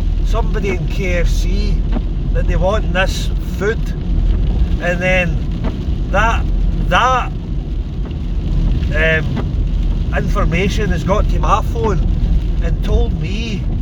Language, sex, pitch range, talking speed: English, male, 75-85 Hz, 95 wpm